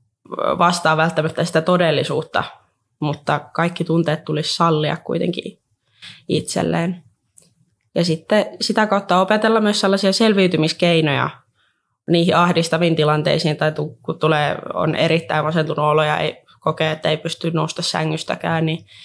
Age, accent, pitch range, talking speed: 20-39, native, 155-175 Hz, 120 wpm